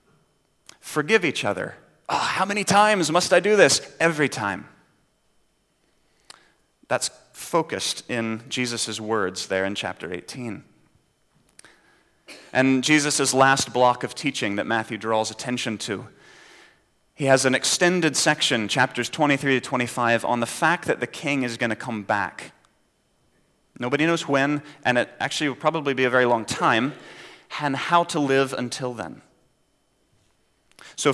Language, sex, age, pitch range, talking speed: English, male, 30-49, 120-155 Hz, 140 wpm